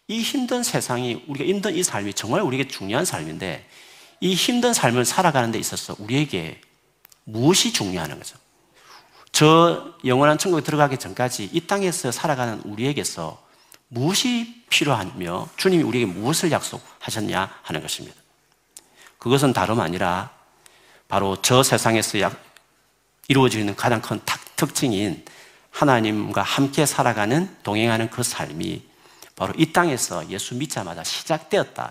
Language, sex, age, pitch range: Korean, male, 40-59, 110-175 Hz